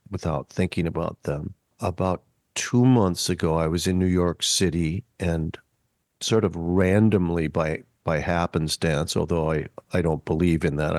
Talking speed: 155 wpm